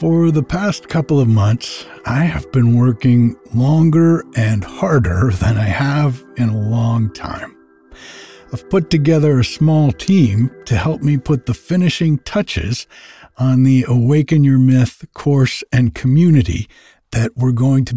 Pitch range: 115-150 Hz